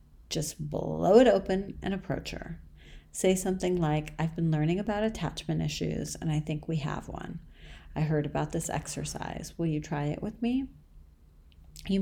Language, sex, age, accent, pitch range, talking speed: English, female, 40-59, American, 135-175 Hz, 170 wpm